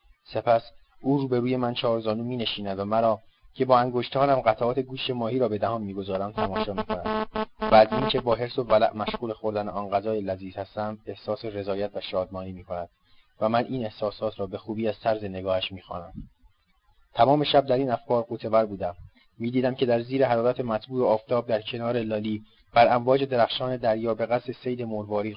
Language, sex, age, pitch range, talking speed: Persian, male, 30-49, 100-120 Hz, 180 wpm